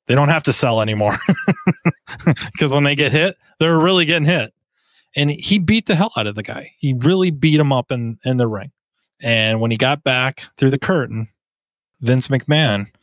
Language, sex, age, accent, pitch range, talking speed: English, male, 30-49, American, 105-145 Hz, 200 wpm